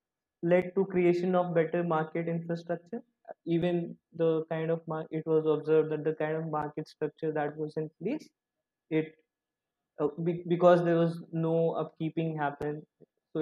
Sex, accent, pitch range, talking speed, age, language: male, native, 150-175 Hz, 155 wpm, 20-39, Telugu